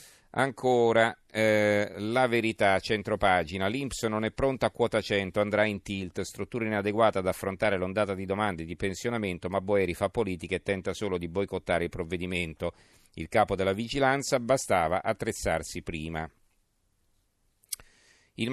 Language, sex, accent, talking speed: Italian, male, native, 140 wpm